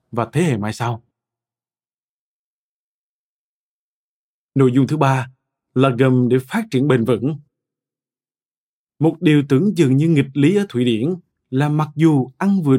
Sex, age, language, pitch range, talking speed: male, 20-39, Vietnamese, 125-160 Hz, 145 wpm